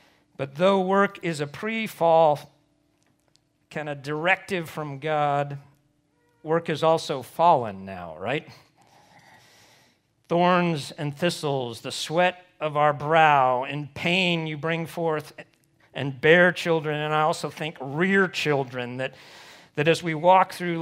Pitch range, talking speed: 145-185 Hz, 130 wpm